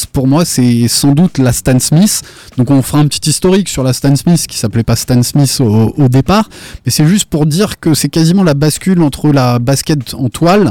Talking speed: 235 wpm